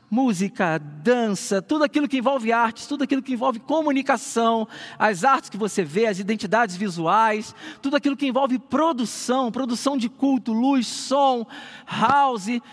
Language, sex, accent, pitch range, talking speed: Portuguese, male, Brazilian, 210-265 Hz, 145 wpm